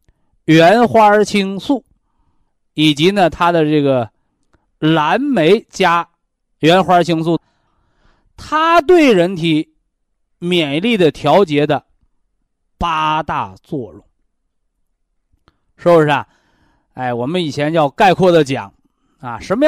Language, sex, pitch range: Chinese, male, 145-230 Hz